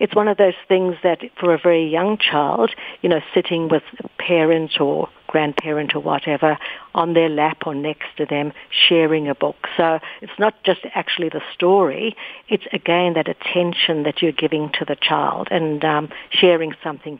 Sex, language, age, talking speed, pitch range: female, English, 60-79, 180 wpm, 155-185 Hz